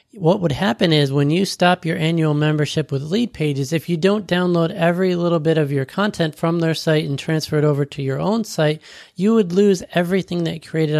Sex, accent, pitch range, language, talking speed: male, American, 150-180 Hz, English, 215 wpm